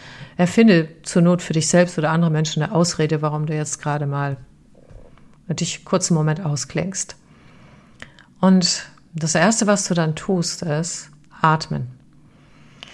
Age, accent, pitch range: 40-59, German, 155-175 Hz